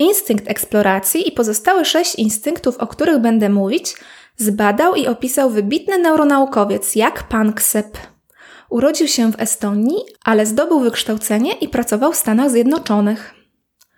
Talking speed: 125 wpm